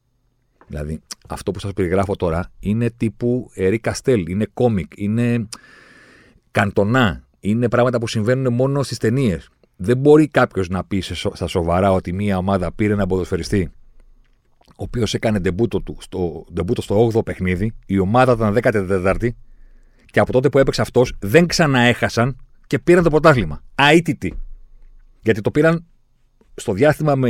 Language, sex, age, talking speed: Greek, male, 40-59, 145 wpm